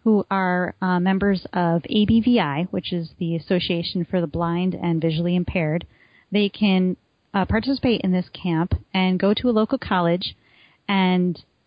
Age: 30-49